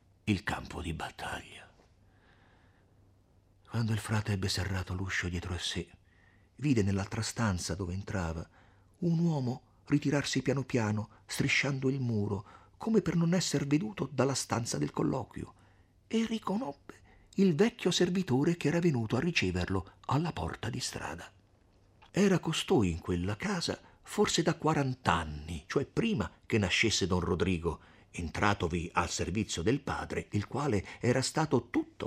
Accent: native